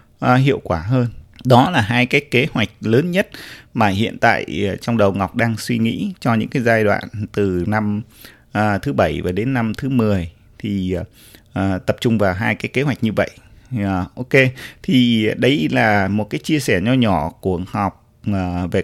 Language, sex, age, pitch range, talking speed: Vietnamese, male, 20-39, 100-130 Hz, 205 wpm